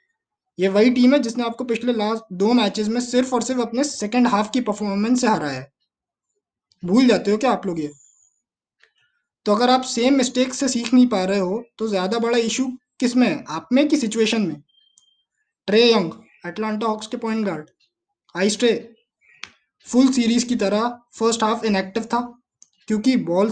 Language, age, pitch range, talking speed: Hindi, 20-39, 200-250 Hz, 170 wpm